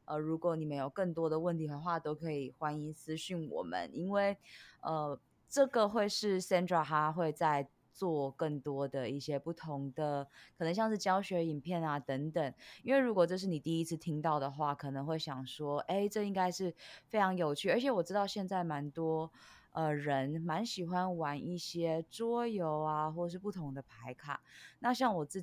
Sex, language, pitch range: female, Chinese, 145-185 Hz